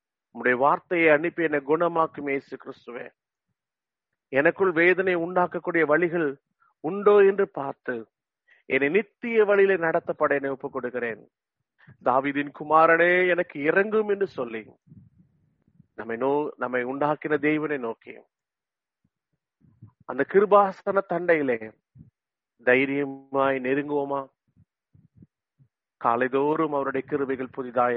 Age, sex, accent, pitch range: 40-59, male, Indian, 130-165 Hz